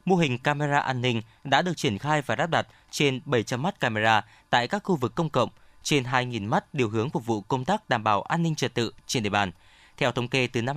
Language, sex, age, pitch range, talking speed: Vietnamese, male, 20-39, 115-145 Hz, 250 wpm